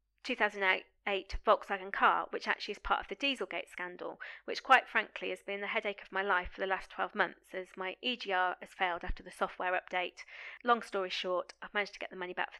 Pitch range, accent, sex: 180-210 Hz, British, female